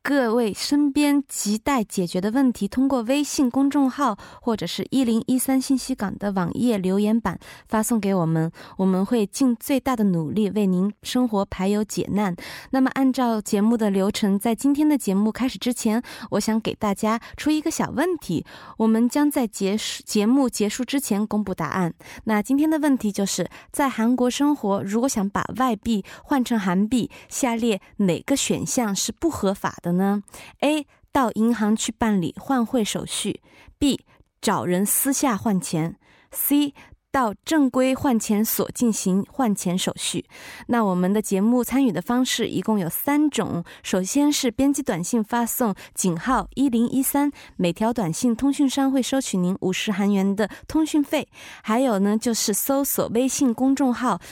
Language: Korean